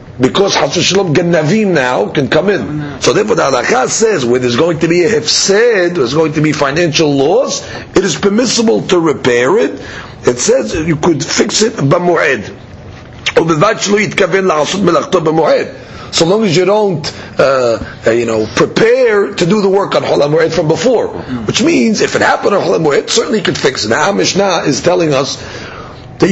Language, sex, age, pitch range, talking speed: English, male, 40-59, 150-200 Hz, 175 wpm